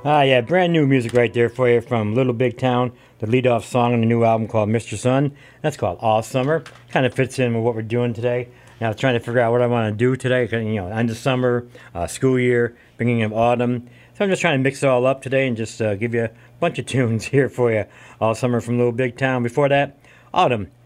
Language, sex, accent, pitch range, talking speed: English, male, American, 115-135 Hz, 260 wpm